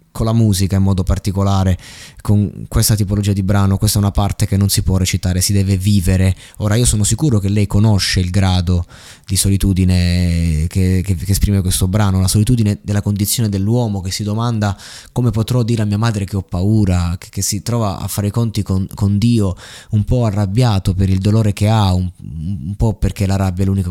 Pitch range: 95-110 Hz